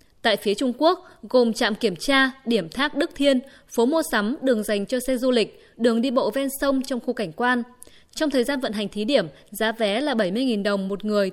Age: 20-39